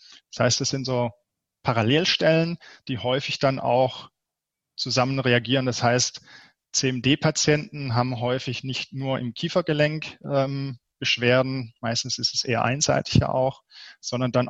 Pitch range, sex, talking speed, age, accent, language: 120-145 Hz, male, 130 wpm, 20-39, German, German